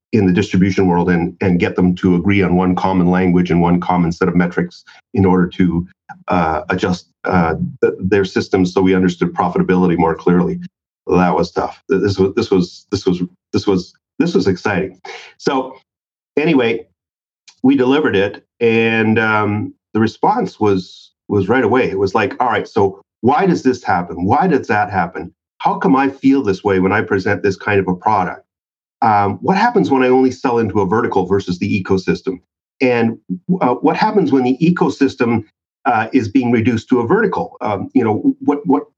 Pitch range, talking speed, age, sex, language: 90-120 Hz, 190 wpm, 40-59, male, English